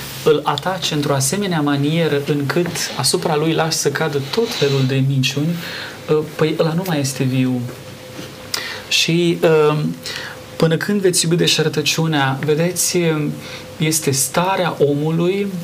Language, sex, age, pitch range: Romanian, male, 30-49, 140-170 Hz